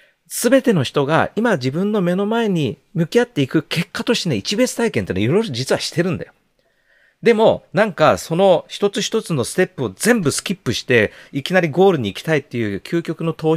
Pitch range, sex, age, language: 140-205 Hz, male, 40-59, Japanese